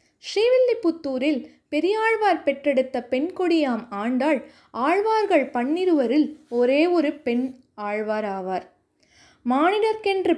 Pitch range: 255-355 Hz